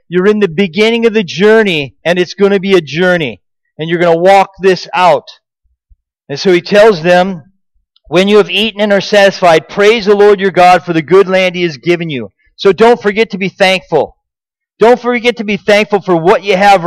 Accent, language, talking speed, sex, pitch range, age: American, English, 215 wpm, male, 180-225 Hz, 40-59